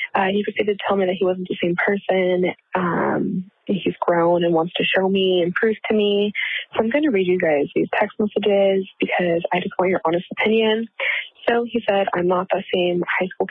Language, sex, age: English, female, 20-39